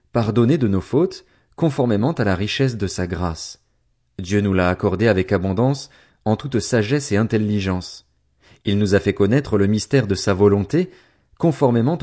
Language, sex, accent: French, male, French